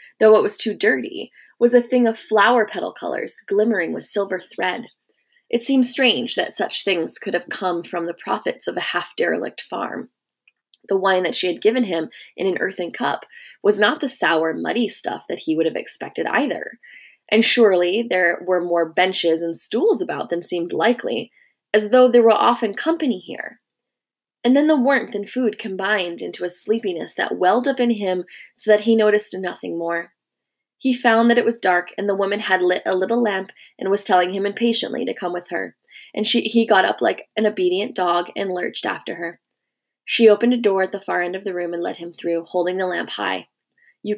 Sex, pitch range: female, 180-240 Hz